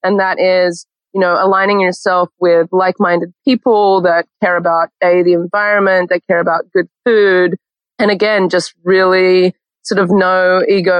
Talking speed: 160 wpm